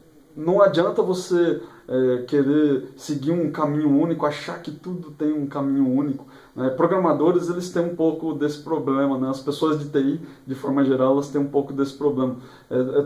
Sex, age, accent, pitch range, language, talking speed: male, 20-39, Brazilian, 145-195 Hz, Portuguese, 185 wpm